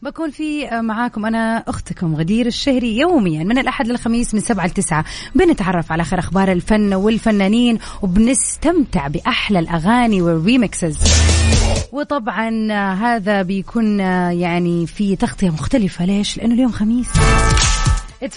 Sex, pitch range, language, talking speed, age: female, 175-230 Hz, English, 120 wpm, 30-49